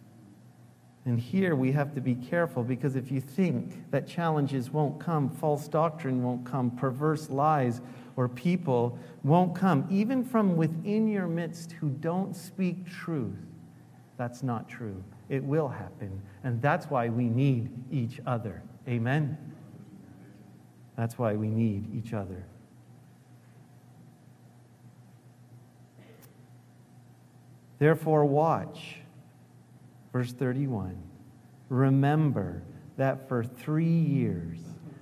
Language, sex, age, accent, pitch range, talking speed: English, male, 50-69, American, 125-175 Hz, 110 wpm